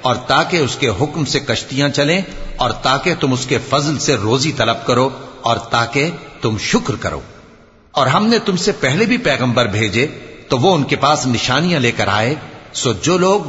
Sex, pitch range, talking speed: male, 120-160 Hz, 195 wpm